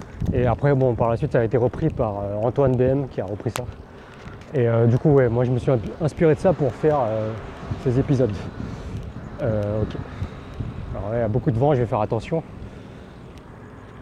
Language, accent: French, French